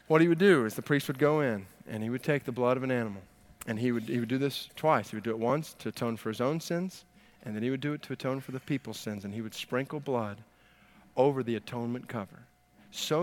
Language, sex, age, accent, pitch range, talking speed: English, male, 40-59, American, 110-145 Hz, 270 wpm